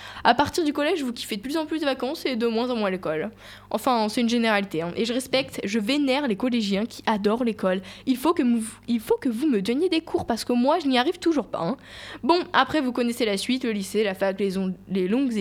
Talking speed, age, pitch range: 265 wpm, 10-29, 220-275 Hz